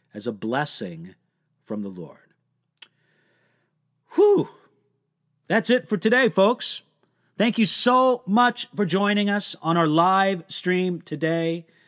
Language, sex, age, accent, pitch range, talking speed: English, male, 40-59, American, 160-195 Hz, 120 wpm